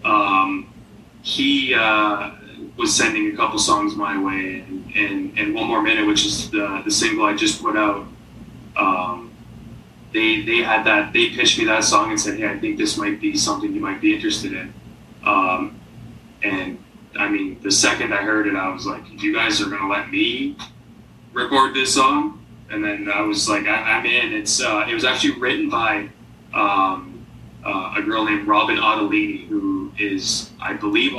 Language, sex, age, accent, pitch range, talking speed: English, male, 20-39, American, 290-320 Hz, 185 wpm